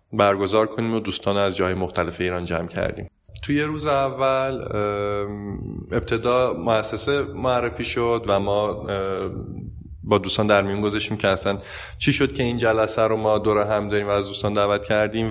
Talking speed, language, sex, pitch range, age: 160 wpm, Persian, male, 95-110 Hz, 20-39